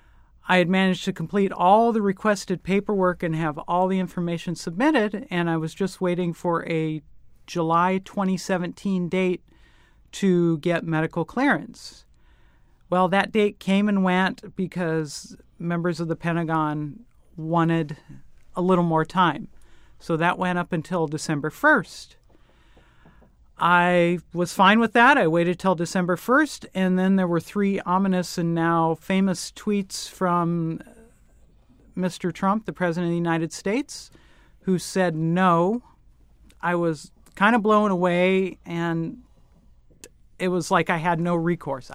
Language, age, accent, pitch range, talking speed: English, 40-59, American, 165-190 Hz, 140 wpm